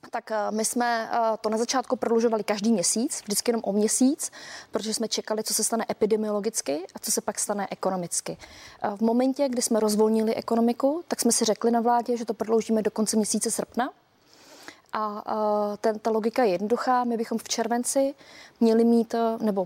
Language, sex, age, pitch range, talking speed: Czech, female, 20-39, 215-235 Hz, 175 wpm